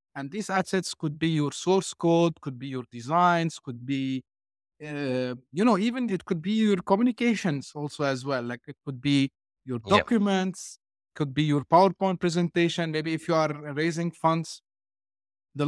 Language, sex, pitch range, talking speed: English, male, 135-175 Hz, 170 wpm